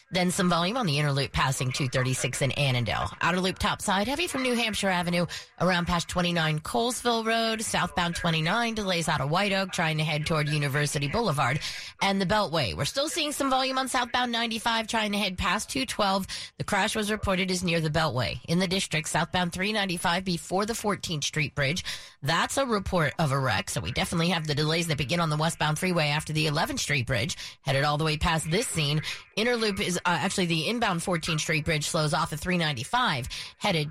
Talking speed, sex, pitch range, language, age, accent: 205 wpm, female, 155-205 Hz, English, 30-49, American